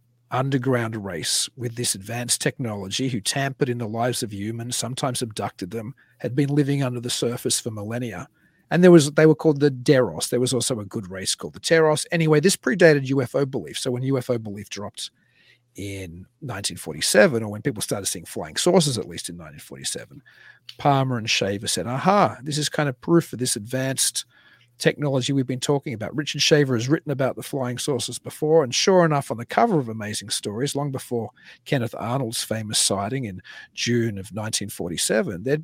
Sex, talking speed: male, 185 wpm